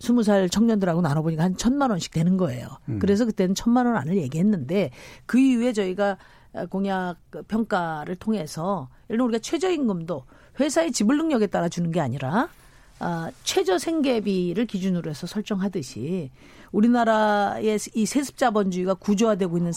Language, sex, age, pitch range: Korean, female, 50-69, 175-240 Hz